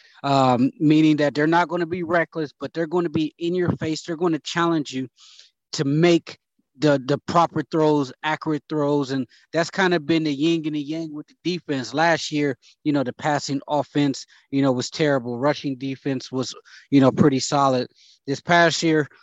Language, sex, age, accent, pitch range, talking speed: English, male, 20-39, American, 140-160 Hz, 200 wpm